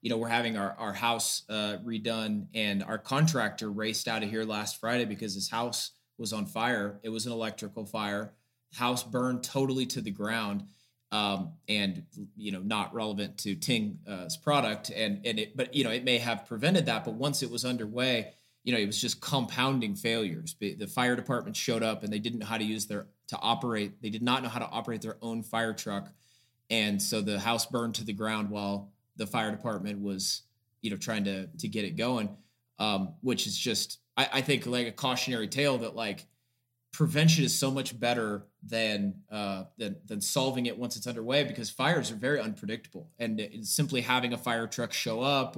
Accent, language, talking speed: American, English, 205 wpm